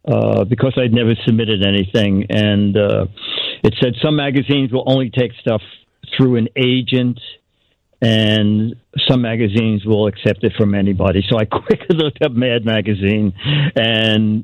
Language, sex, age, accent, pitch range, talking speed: English, male, 50-69, American, 105-125 Hz, 145 wpm